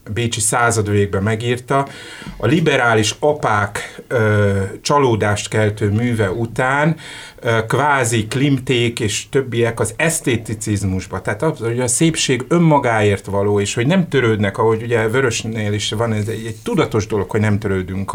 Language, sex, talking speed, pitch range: Hungarian, male, 135 wpm, 105-130 Hz